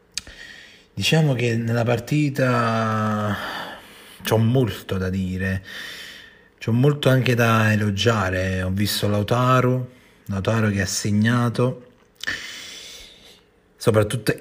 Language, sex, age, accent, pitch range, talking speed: Italian, male, 30-49, native, 100-120 Hz, 85 wpm